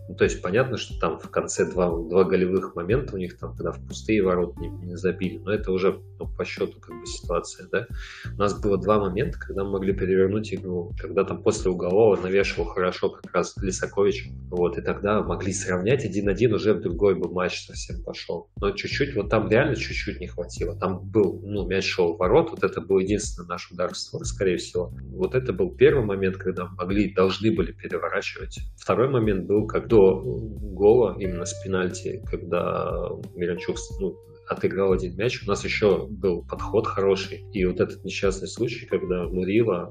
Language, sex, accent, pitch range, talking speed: Russian, male, native, 90-100 Hz, 190 wpm